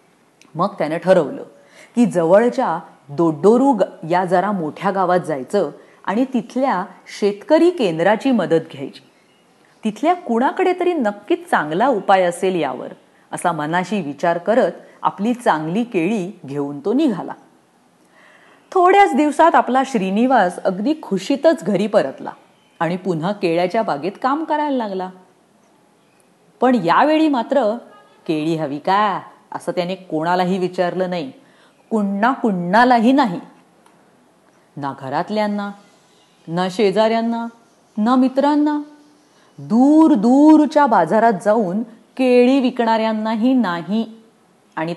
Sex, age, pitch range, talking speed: female, 30-49, 180-275 Hz, 80 wpm